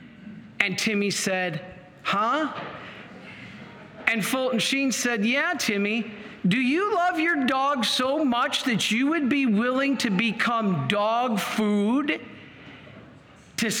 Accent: American